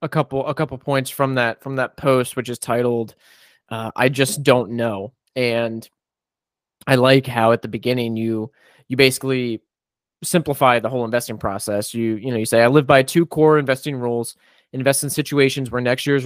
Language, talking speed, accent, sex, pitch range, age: English, 190 wpm, American, male, 115-135 Hz, 20-39